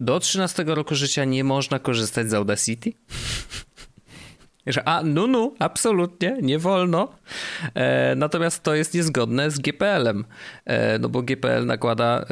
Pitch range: 120-155 Hz